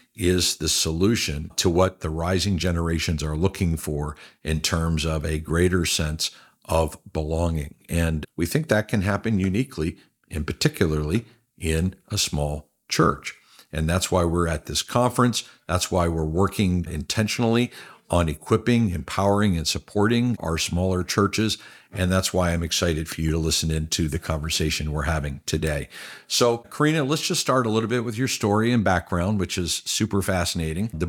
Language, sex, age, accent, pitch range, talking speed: English, male, 50-69, American, 80-100 Hz, 165 wpm